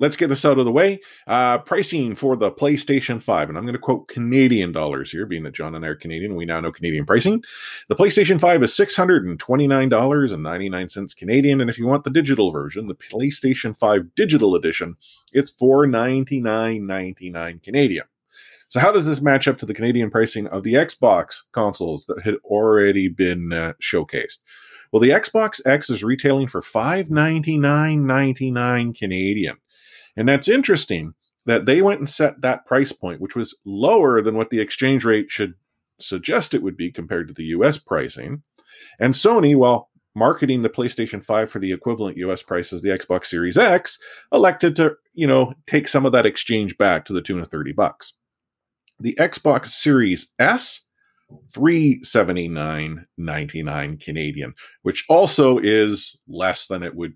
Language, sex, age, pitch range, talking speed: English, male, 30-49, 100-145 Hz, 165 wpm